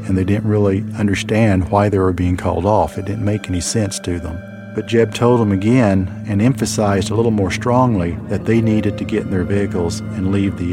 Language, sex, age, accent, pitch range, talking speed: English, male, 50-69, American, 95-110 Hz, 225 wpm